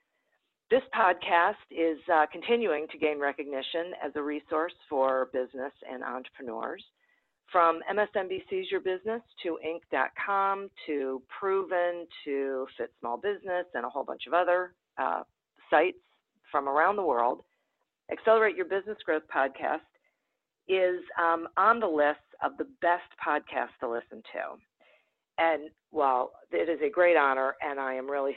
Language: English